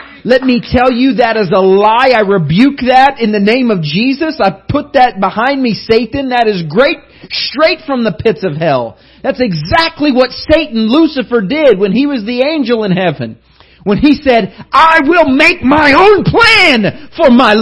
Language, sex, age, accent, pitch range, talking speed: English, male, 40-59, American, 190-295 Hz, 185 wpm